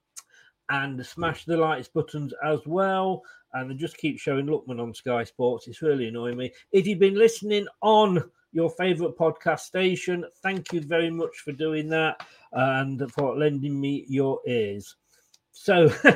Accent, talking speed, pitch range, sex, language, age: British, 160 wpm, 145-215 Hz, male, English, 40-59